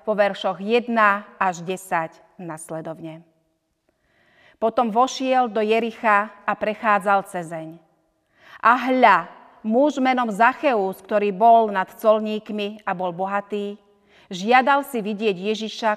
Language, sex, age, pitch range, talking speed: Slovak, female, 40-59, 190-230 Hz, 110 wpm